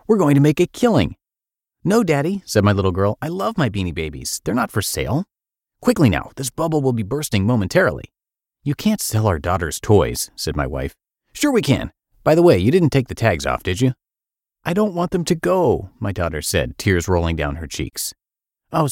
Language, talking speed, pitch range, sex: English, 215 wpm, 90-145 Hz, male